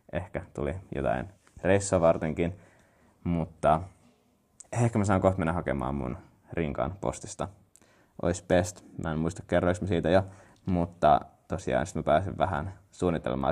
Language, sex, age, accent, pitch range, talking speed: Finnish, male, 20-39, native, 75-95 Hz, 130 wpm